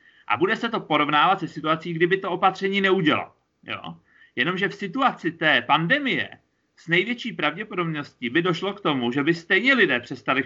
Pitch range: 135-170 Hz